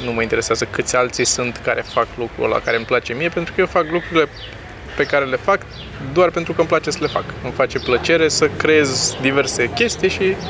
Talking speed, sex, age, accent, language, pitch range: 225 wpm, male, 20-39, native, Romanian, 125-170 Hz